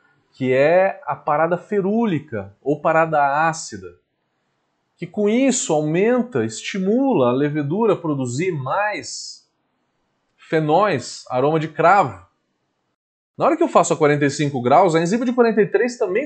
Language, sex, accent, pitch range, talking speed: Portuguese, male, Brazilian, 135-210 Hz, 130 wpm